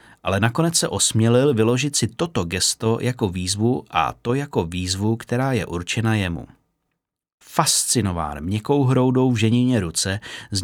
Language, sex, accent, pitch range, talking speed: Czech, male, native, 95-125 Hz, 140 wpm